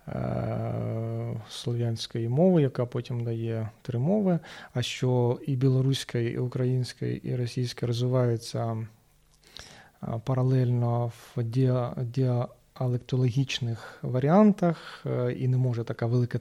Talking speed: 95 wpm